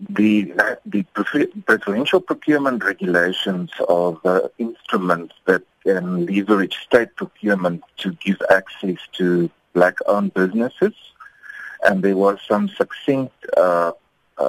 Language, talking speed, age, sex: English, 105 wpm, 50-69, male